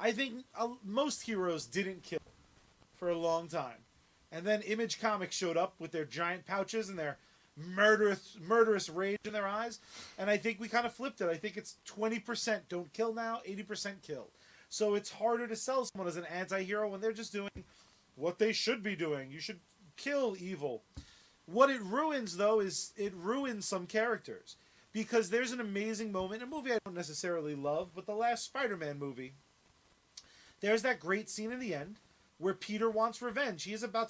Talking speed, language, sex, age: 185 wpm, English, male, 30-49